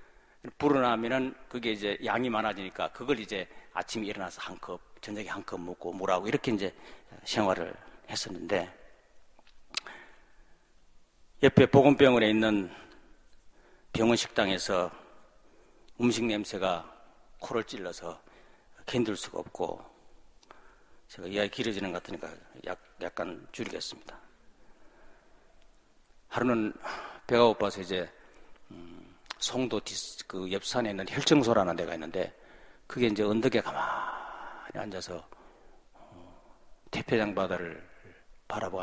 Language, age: Korean, 40-59